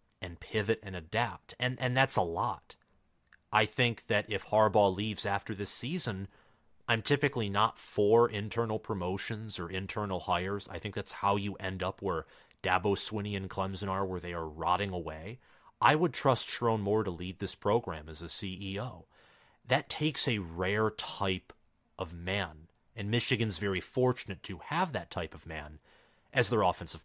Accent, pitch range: American, 90-115 Hz